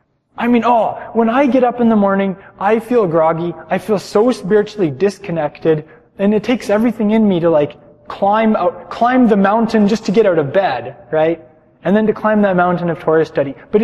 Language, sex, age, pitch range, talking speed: English, male, 20-39, 150-205 Hz, 205 wpm